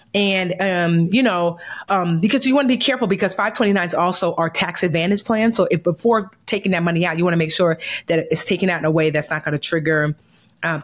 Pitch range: 160-190 Hz